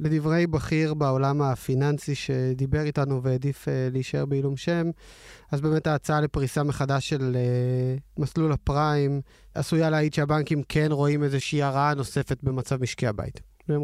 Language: Hebrew